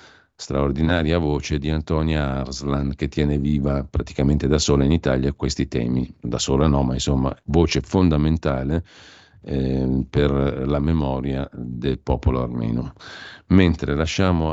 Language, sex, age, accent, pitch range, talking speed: Italian, male, 50-69, native, 70-85 Hz, 130 wpm